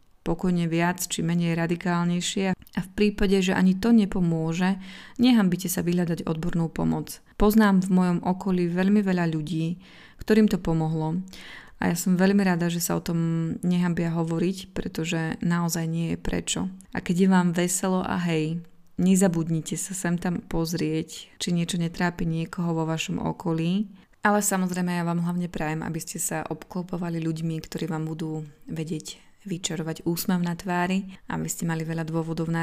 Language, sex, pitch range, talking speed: Slovak, female, 165-185 Hz, 160 wpm